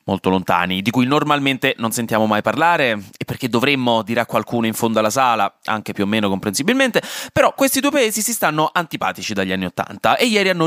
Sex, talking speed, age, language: male, 205 wpm, 20-39, Italian